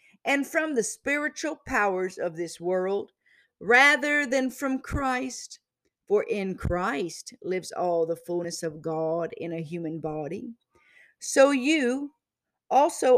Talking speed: 125 wpm